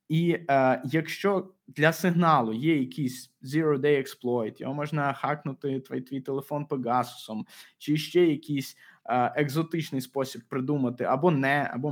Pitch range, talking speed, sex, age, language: 130-165 Hz, 130 wpm, male, 20-39, Russian